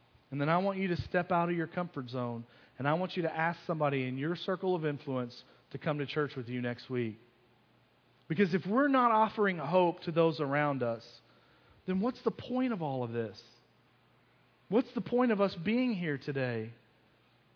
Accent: American